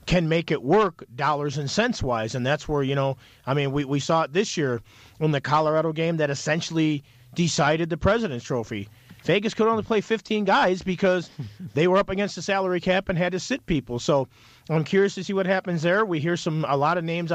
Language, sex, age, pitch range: English, male, 40-59, 135-185 Hz